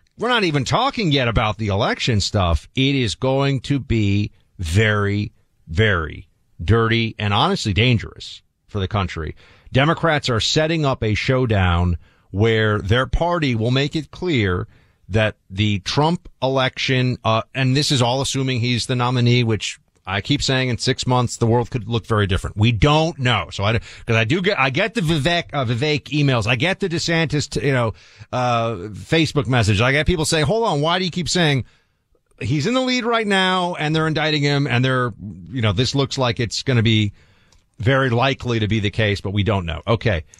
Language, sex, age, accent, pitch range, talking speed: English, male, 40-59, American, 100-135 Hz, 195 wpm